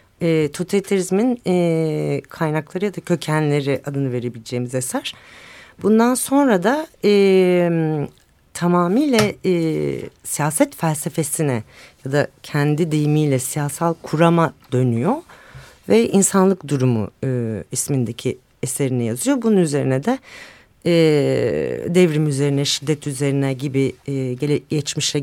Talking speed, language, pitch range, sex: 105 wpm, Turkish, 140-195 Hz, female